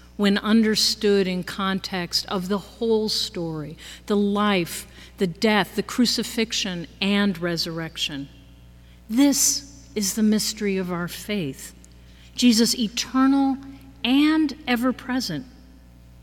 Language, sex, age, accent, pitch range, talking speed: English, female, 50-69, American, 160-225 Hz, 100 wpm